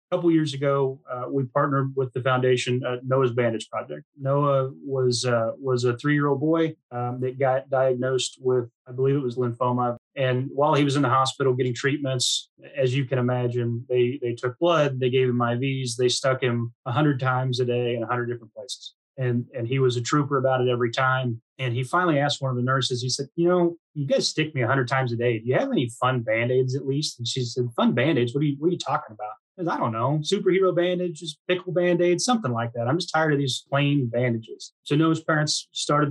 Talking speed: 225 wpm